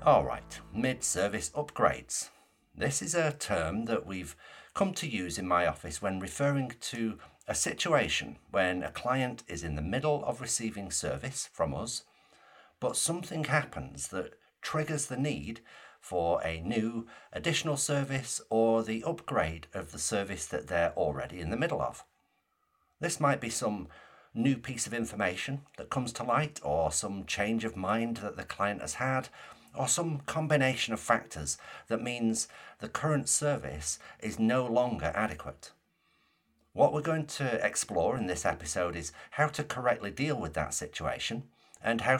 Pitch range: 85-135 Hz